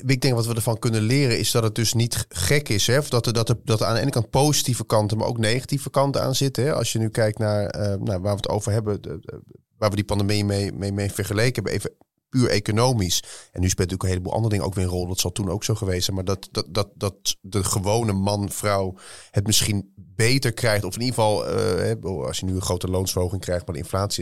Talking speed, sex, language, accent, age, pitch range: 260 wpm, male, Dutch, Dutch, 30-49, 100-120 Hz